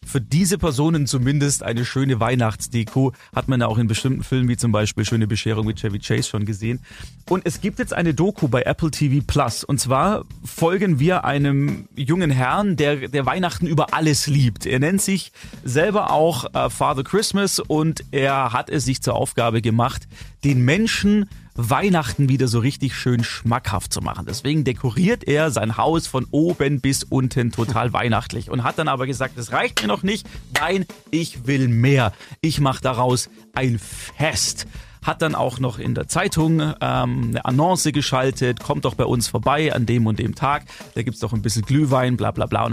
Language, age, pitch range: German, 30-49, 120-155 Hz